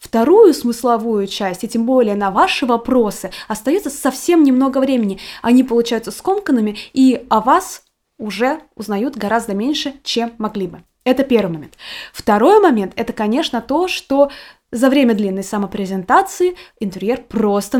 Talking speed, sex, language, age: 140 wpm, female, Russian, 20-39